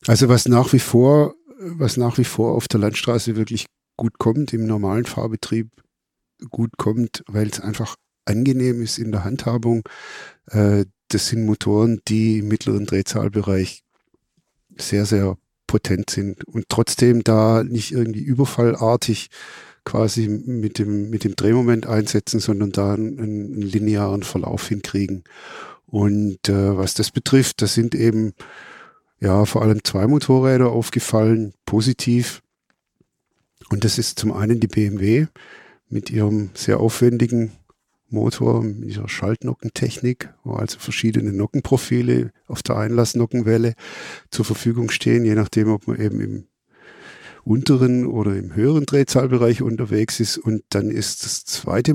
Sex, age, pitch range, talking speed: male, 50-69, 105-120 Hz, 135 wpm